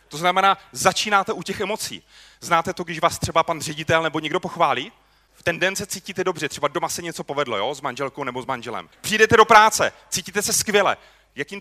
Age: 30-49